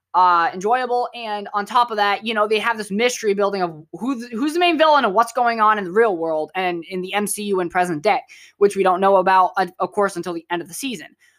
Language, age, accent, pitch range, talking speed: English, 20-39, American, 170-220 Hz, 255 wpm